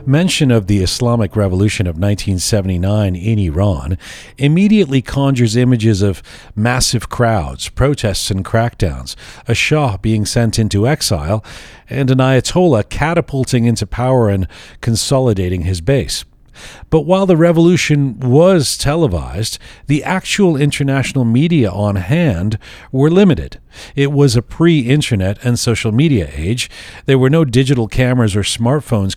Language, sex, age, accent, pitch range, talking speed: English, male, 40-59, American, 105-145 Hz, 130 wpm